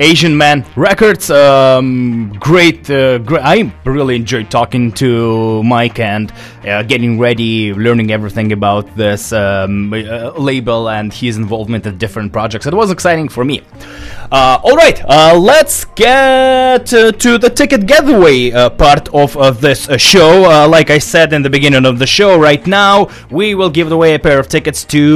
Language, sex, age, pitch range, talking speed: English, male, 20-39, 120-160 Hz, 170 wpm